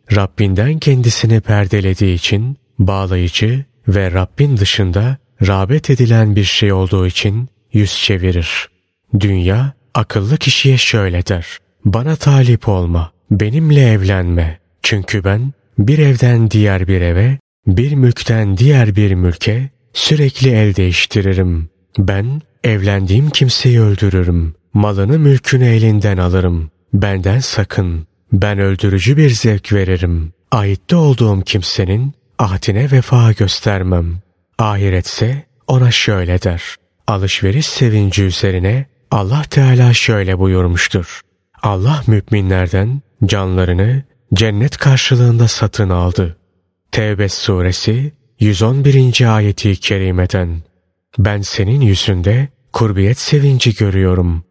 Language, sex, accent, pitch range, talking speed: Turkish, male, native, 95-125 Hz, 100 wpm